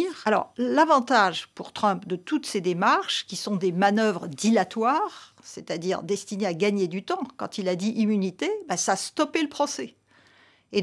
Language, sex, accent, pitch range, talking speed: French, female, French, 195-260 Hz, 170 wpm